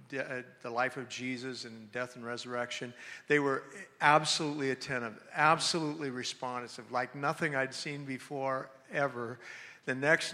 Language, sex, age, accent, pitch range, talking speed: English, male, 50-69, American, 130-150 Hz, 120 wpm